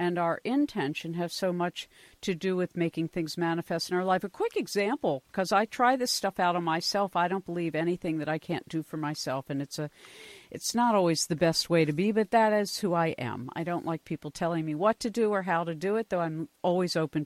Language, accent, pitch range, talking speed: English, American, 165-215 Hz, 245 wpm